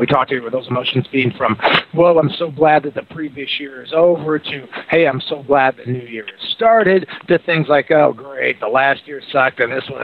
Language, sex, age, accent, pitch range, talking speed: English, male, 50-69, American, 125-155 Hz, 245 wpm